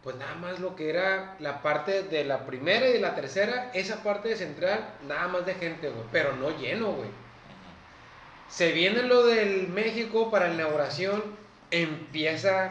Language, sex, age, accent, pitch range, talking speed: Spanish, male, 30-49, Mexican, 150-205 Hz, 175 wpm